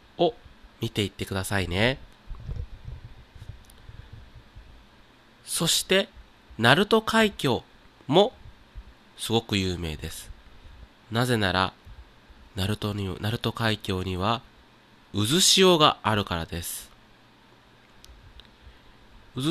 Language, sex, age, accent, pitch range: Japanese, male, 30-49, native, 105-140 Hz